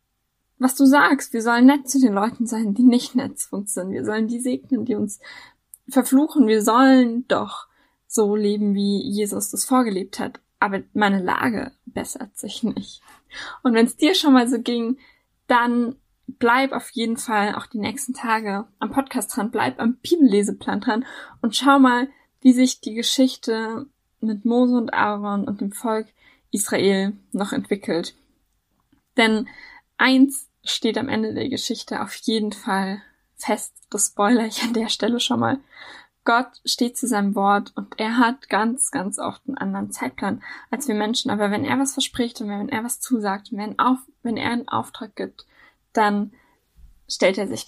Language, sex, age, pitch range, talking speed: German, female, 10-29, 215-255 Hz, 170 wpm